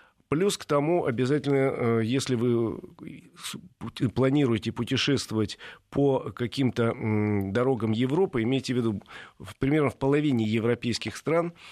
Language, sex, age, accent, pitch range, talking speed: Russian, male, 40-59, native, 110-140 Hz, 110 wpm